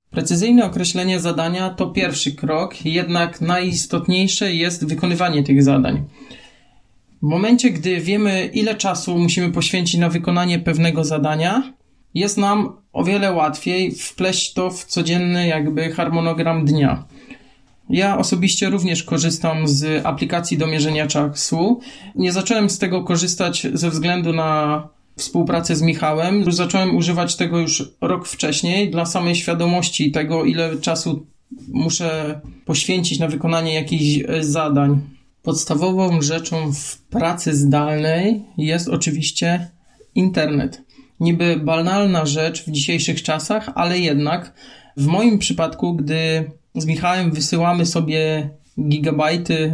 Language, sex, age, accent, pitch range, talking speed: Polish, male, 20-39, native, 155-180 Hz, 120 wpm